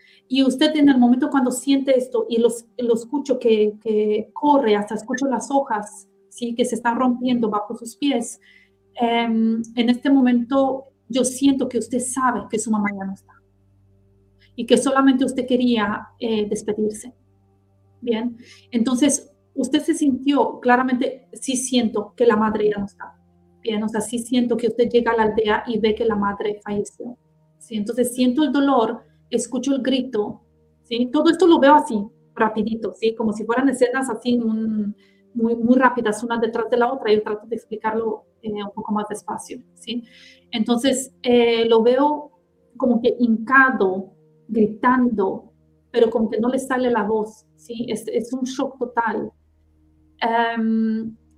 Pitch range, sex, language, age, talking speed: 210-255 Hz, female, Spanish, 40-59, 165 wpm